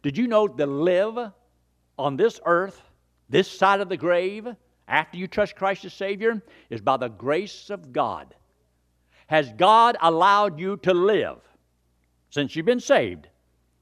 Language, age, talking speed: English, 60-79, 150 wpm